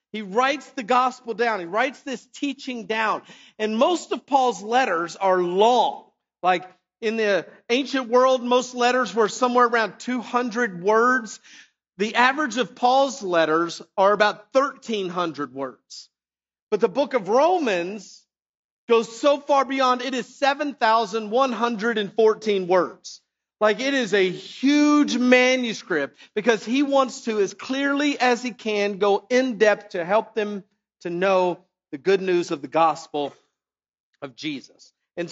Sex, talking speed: male, 140 wpm